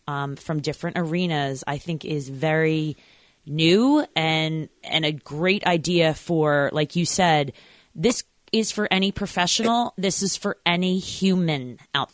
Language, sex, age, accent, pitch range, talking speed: English, female, 20-39, American, 155-205 Hz, 145 wpm